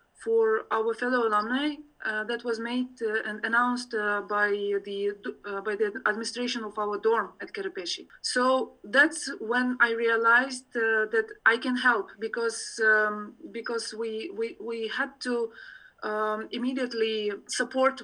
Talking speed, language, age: 145 wpm, English, 30-49